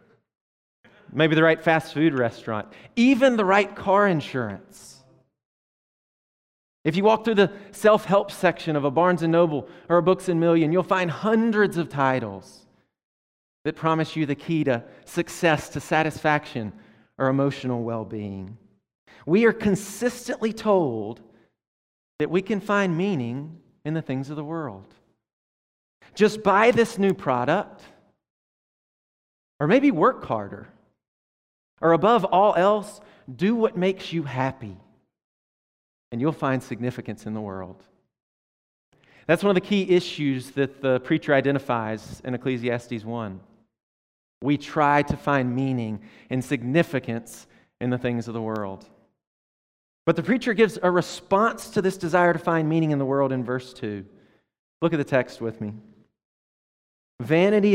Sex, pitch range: male, 120-180 Hz